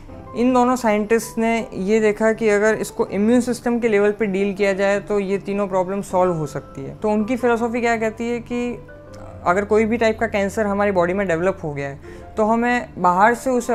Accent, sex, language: native, female, Hindi